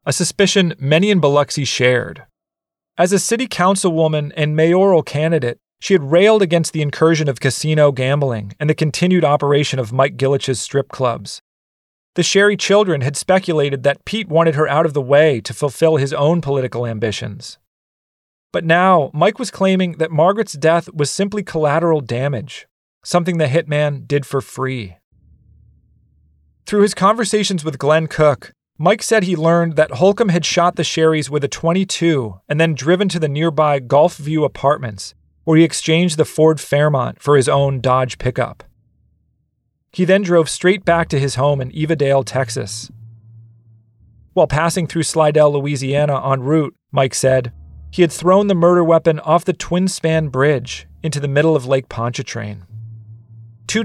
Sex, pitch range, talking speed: male, 130-170 Hz, 160 wpm